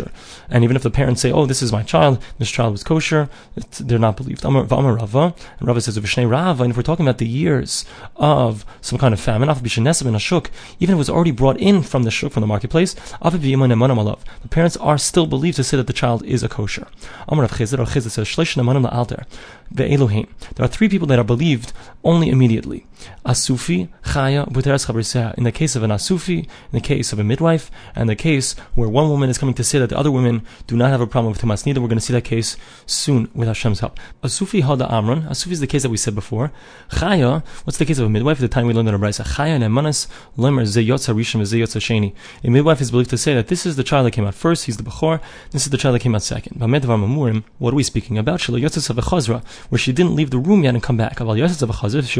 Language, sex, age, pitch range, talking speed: English, male, 30-49, 115-145 Hz, 200 wpm